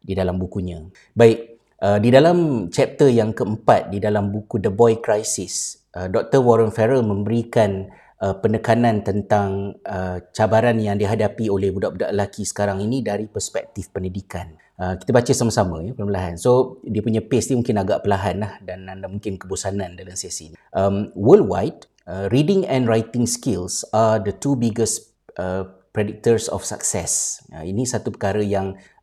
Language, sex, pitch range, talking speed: Malay, male, 95-115 Hz, 160 wpm